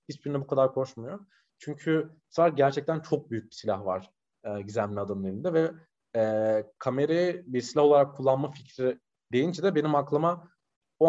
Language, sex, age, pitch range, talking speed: Turkish, male, 40-59, 120-170 Hz, 155 wpm